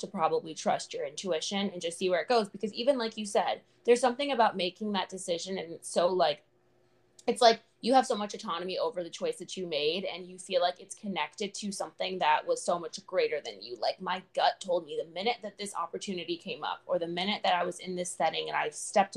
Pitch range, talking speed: 180-230 Hz, 245 wpm